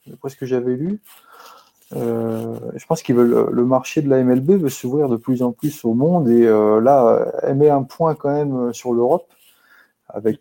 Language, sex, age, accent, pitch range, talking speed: French, male, 30-49, French, 115-140 Hz, 190 wpm